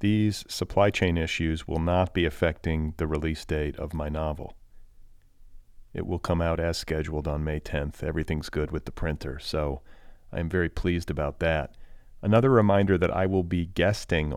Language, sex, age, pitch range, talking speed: English, male, 40-59, 75-90 Hz, 170 wpm